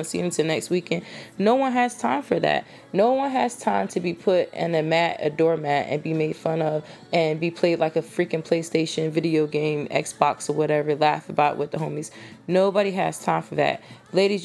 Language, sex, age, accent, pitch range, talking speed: English, female, 20-39, American, 165-200 Hz, 210 wpm